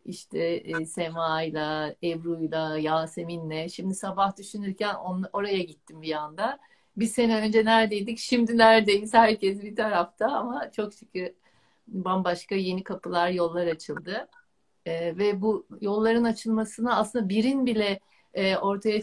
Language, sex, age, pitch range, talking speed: Turkish, female, 60-79, 185-235 Hz, 125 wpm